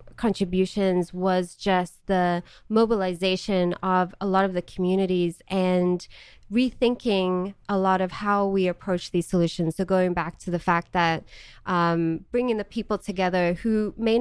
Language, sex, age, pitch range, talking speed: English, female, 20-39, 175-210 Hz, 150 wpm